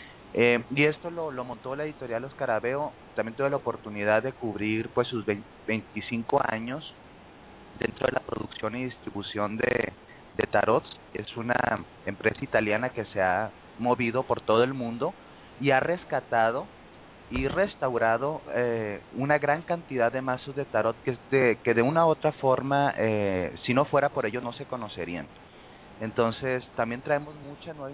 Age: 30-49